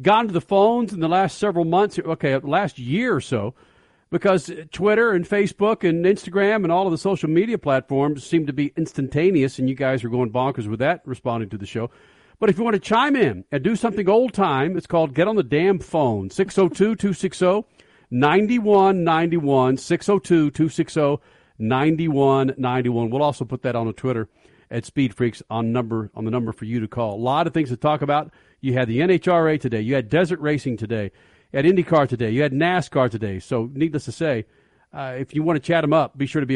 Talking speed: 195 wpm